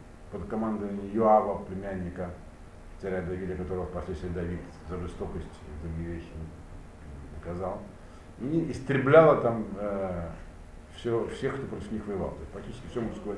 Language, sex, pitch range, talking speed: Russian, male, 80-120 Hz, 130 wpm